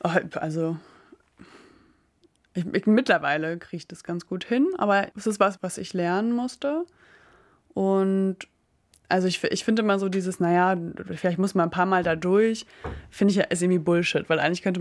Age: 20-39